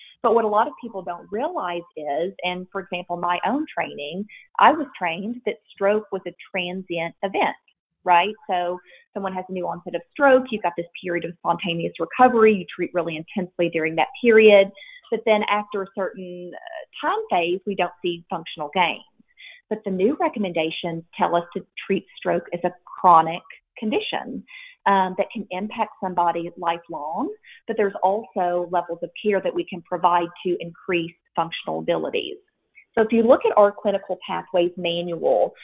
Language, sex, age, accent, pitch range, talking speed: English, female, 30-49, American, 175-220 Hz, 170 wpm